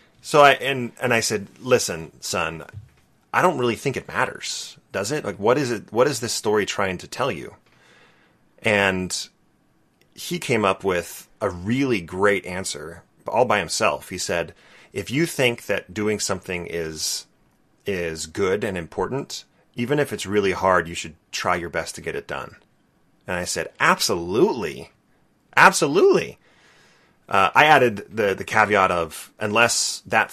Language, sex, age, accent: English, male, 30-49, American